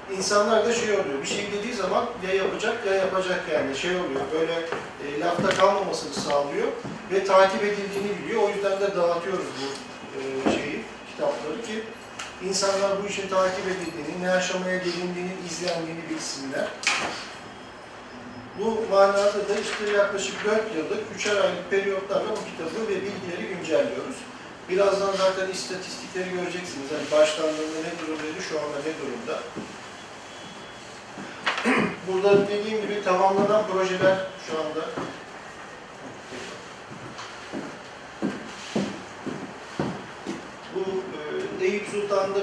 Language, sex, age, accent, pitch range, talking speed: Turkish, male, 40-59, native, 180-205 Hz, 115 wpm